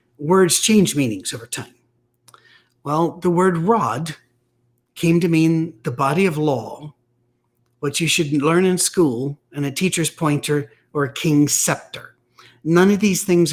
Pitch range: 145-180 Hz